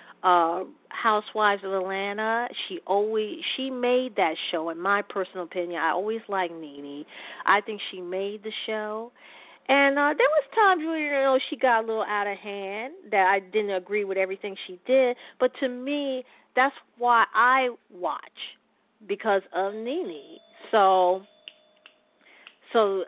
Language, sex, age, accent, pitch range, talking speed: English, female, 40-59, American, 195-260 Hz, 155 wpm